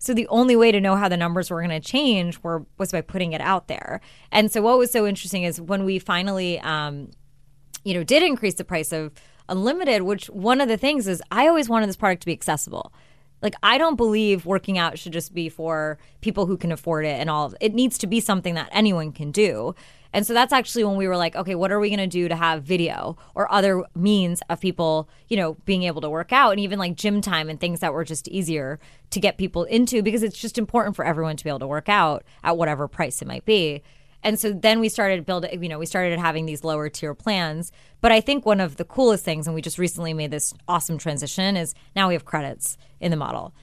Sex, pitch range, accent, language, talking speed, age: female, 160-210 Hz, American, English, 250 wpm, 20-39